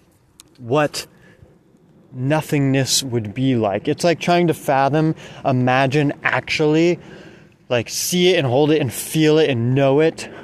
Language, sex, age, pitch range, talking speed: English, male, 20-39, 125-165 Hz, 140 wpm